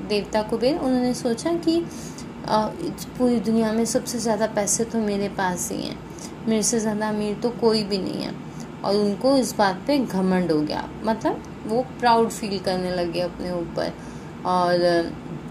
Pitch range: 200-245 Hz